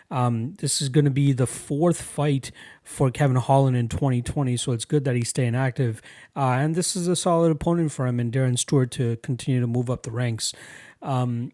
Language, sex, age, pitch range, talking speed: English, male, 30-49, 125-145 Hz, 215 wpm